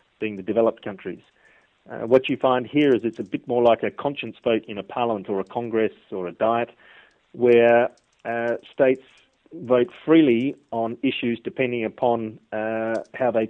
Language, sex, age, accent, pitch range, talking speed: English, male, 40-59, Australian, 110-125 Hz, 175 wpm